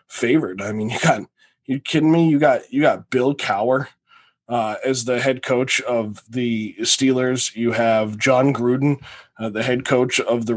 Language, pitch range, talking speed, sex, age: English, 115-140 Hz, 180 wpm, male, 20-39